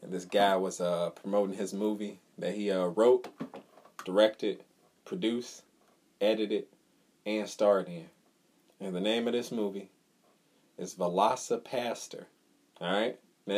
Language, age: English, 30-49